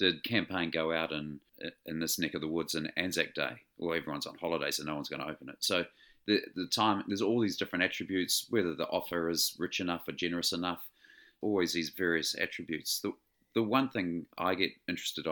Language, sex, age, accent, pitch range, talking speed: English, male, 40-59, Australian, 80-85 Hz, 210 wpm